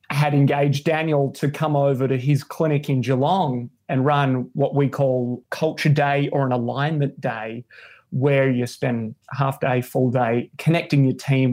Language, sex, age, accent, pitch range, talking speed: English, male, 30-49, Australian, 130-150 Hz, 165 wpm